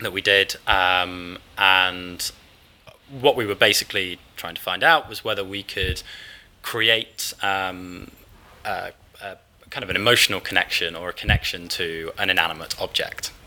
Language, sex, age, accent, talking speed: English, male, 20-39, British, 140 wpm